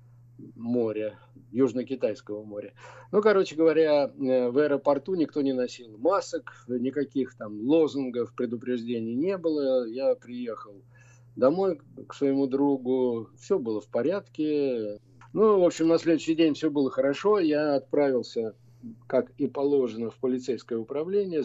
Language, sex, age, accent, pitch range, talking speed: Russian, male, 50-69, native, 120-155 Hz, 125 wpm